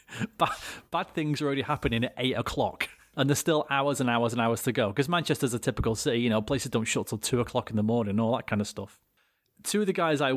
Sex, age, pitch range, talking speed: male, 30-49, 115-145 Hz, 260 wpm